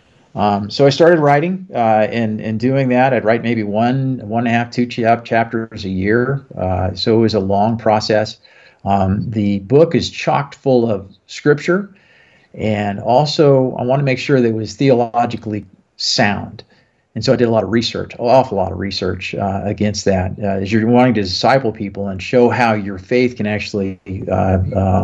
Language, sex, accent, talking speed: English, male, American, 190 wpm